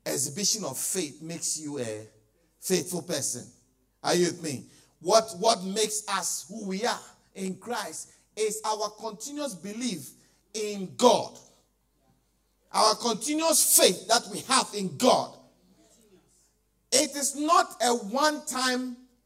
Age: 50-69